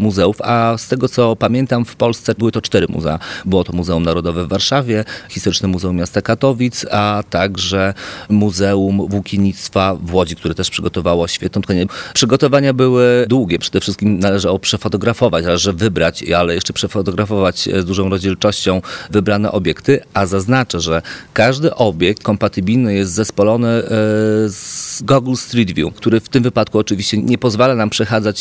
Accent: native